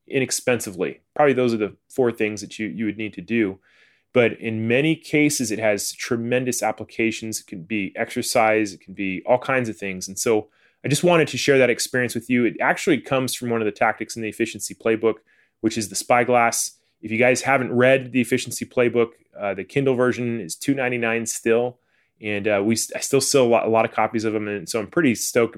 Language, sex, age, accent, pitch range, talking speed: English, male, 20-39, American, 110-130 Hz, 230 wpm